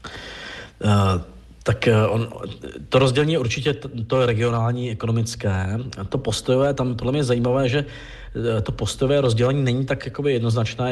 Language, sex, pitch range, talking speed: Czech, male, 105-125 Hz, 115 wpm